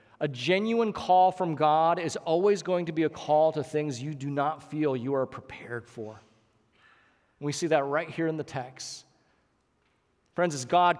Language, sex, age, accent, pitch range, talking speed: English, male, 40-59, American, 140-195 Hz, 180 wpm